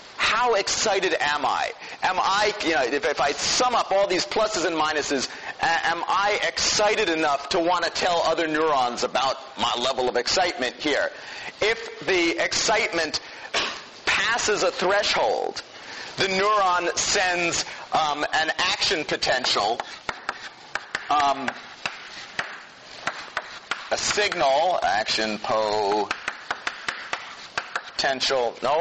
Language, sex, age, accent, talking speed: English, male, 40-59, American, 110 wpm